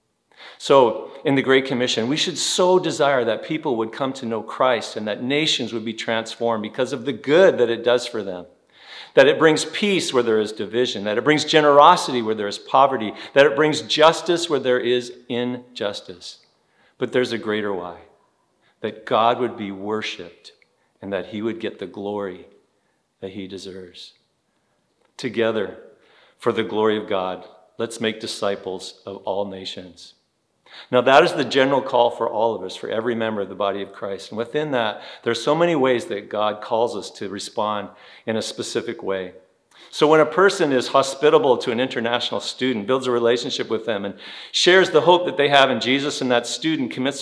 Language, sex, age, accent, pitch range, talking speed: English, male, 50-69, American, 110-140 Hz, 190 wpm